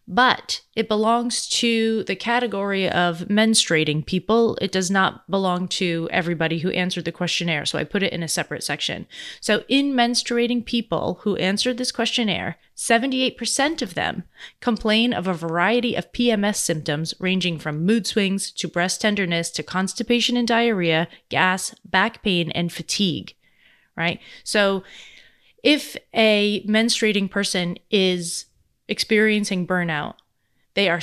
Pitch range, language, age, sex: 170-220 Hz, English, 30-49, female